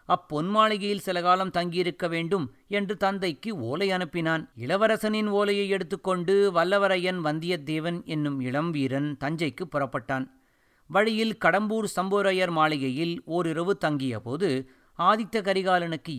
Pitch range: 150-200 Hz